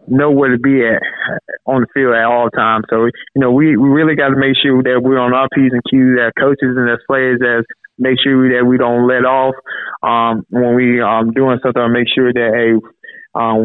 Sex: male